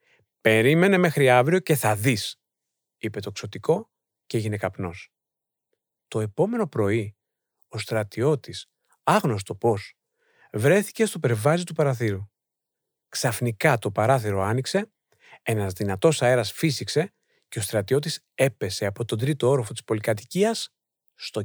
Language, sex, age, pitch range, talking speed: Greek, male, 40-59, 110-165 Hz, 120 wpm